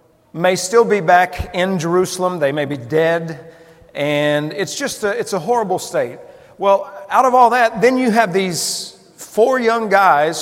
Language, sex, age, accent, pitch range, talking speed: English, male, 50-69, American, 165-220 Hz, 175 wpm